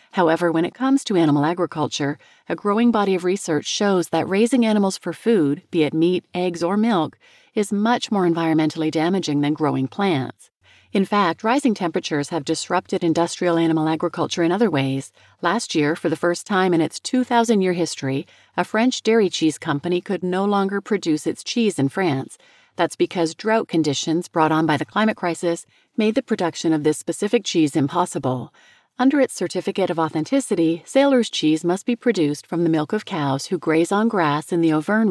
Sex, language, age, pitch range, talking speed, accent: female, English, 40-59, 160-215 Hz, 185 wpm, American